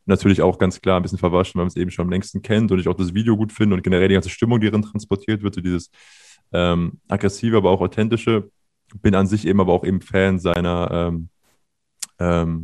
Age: 20-39